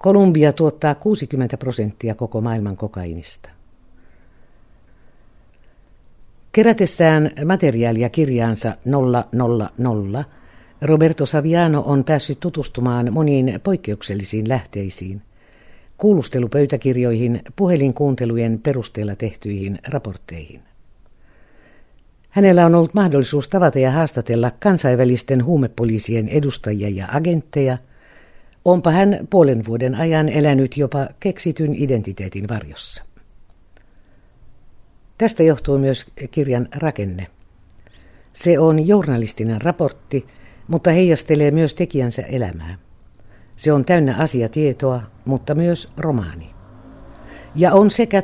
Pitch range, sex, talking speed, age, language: 110-155 Hz, female, 85 wpm, 60-79, Finnish